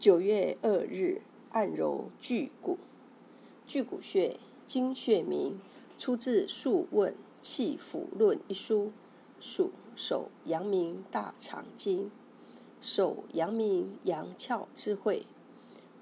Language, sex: Chinese, female